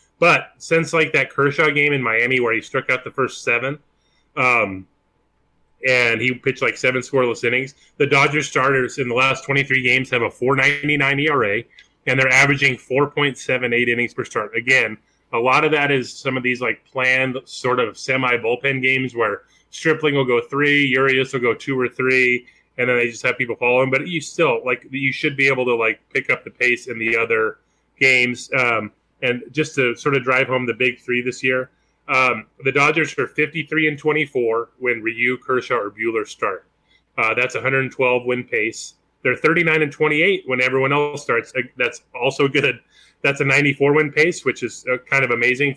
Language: English